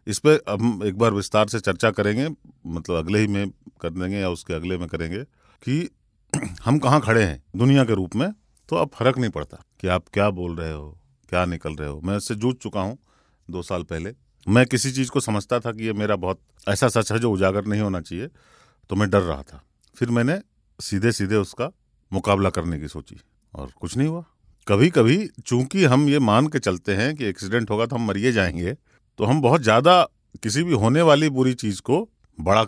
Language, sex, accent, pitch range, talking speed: Hindi, male, native, 90-125 Hz, 210 wpm